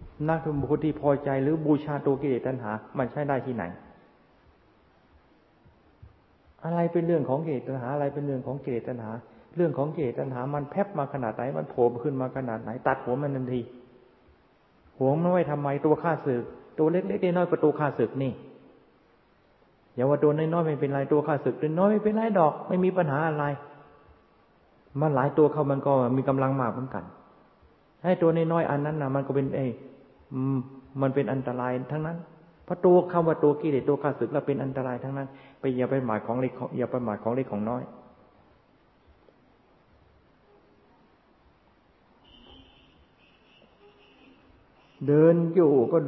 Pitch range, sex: 130-155 Hz, male